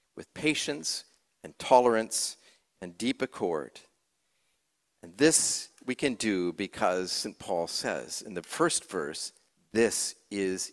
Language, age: English, 50-69